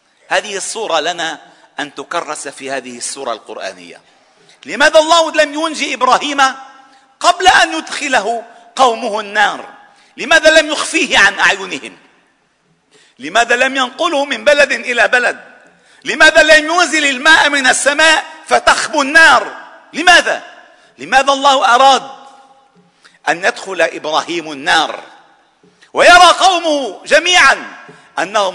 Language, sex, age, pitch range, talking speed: Arabic, male, 50-69, 255-325 Hz, 105 wpm